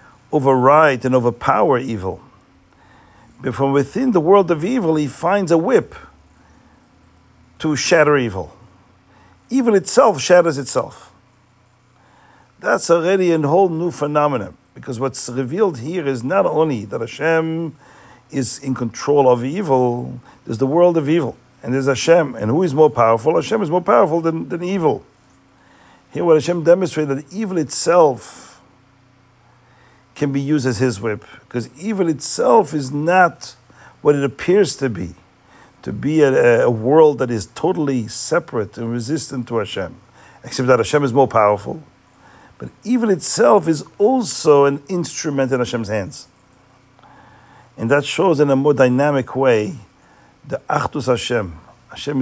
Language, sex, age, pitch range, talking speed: English, male, 50-69, 120-160 Hz, 145 wpm